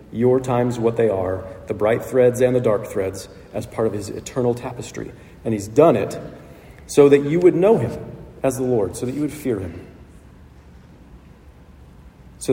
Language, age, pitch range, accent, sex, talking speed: English, 40-59, 95-130 Hz, American, male, 180 wpm